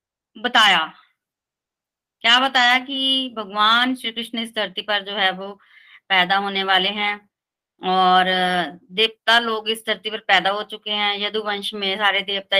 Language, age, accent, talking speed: Hindi, 30-49, native, 150 wpm